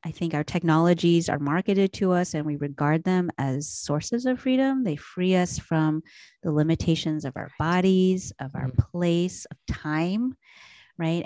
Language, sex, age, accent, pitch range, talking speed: English, female, 30-49, American, 155-185 Hz, 165 wpm